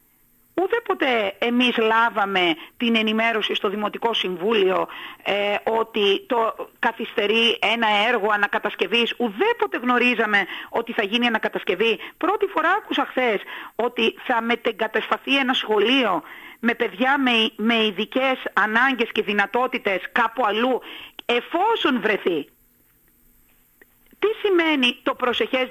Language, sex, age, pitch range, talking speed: Greek, female, 40-59, 215-315 Hz, 110 wpm